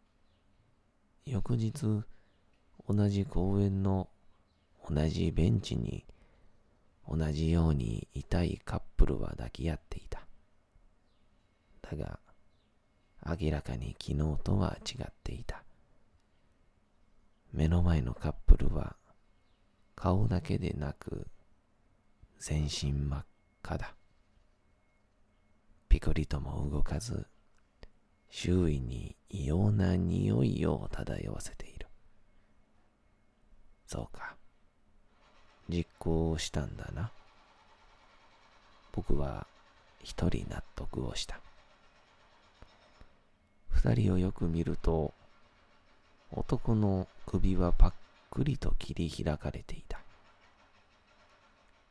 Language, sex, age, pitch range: Japanese, male, 40-59, 75-100 Hz